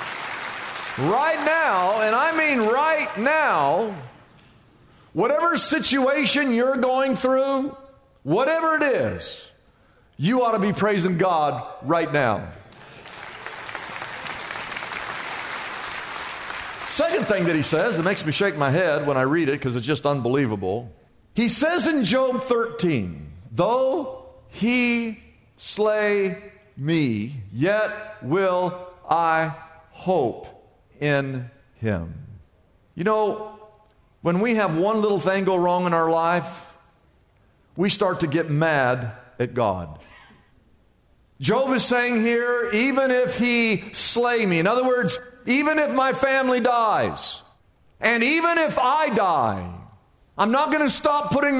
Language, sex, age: English, male, 50-69